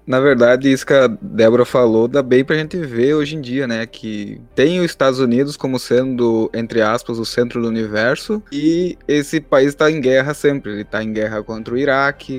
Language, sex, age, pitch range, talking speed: Portuguese, male, 20-39, 115-145 Hz, 215 wpm